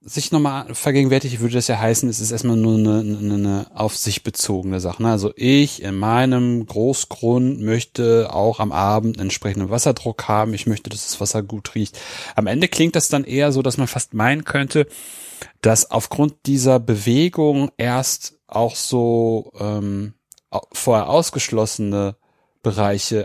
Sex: male